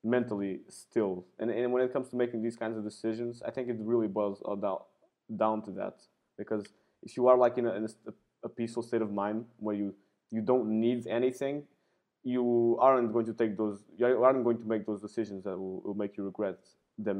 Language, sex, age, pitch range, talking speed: English, male, 20-39, 105-130 Hz, 215 wpm